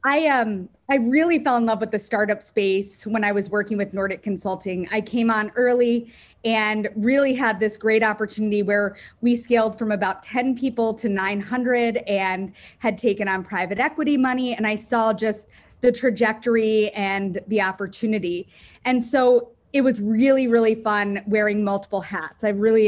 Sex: female